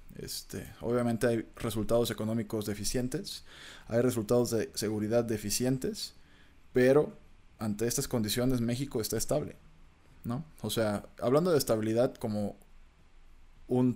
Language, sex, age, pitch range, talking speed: Spanish, male, 20-39, 105-125 Hz, 110 wpm